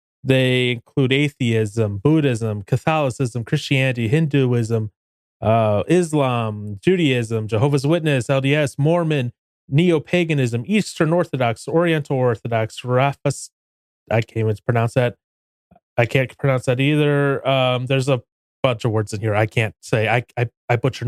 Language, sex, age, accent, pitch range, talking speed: English, male, 30-49, American, 115-150 Hz, 130 wpm